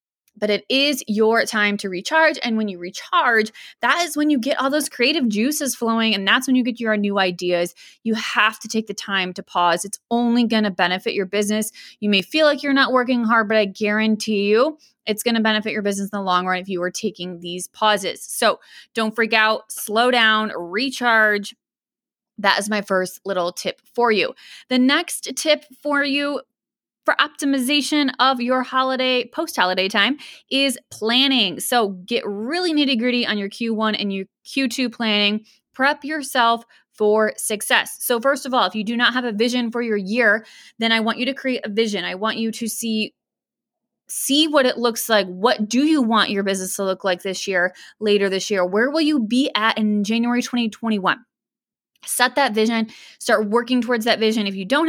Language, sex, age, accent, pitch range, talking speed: English, female, 20-39, American, 210-255 Hz, 195 wpm